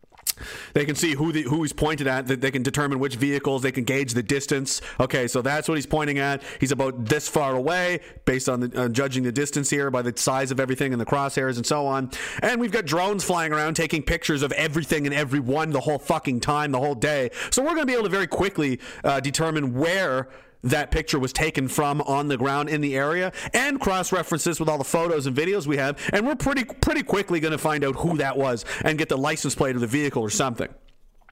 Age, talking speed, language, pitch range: 30-49, 235 wpm, English, 135-160 Hz